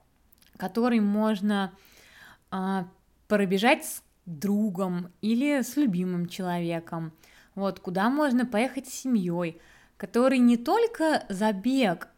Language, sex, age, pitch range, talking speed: Russian, female, 20-39, 190-255 Hz, 100 wpm